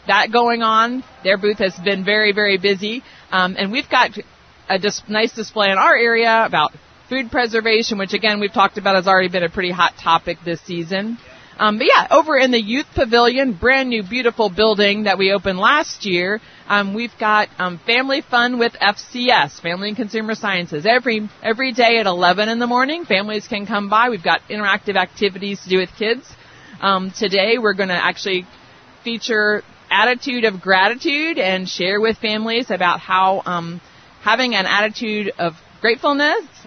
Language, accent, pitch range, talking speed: English, American, 190-230 Hz, 175 wpm